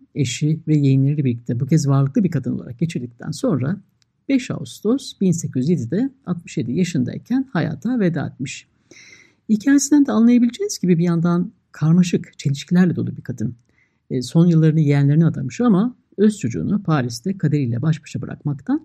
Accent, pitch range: native, 140-200 Hz